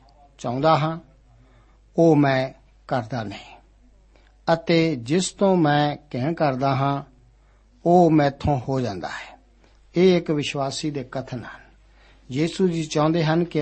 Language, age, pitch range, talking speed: Punjabi, 60-79, 140-165 Hz, 130 wpm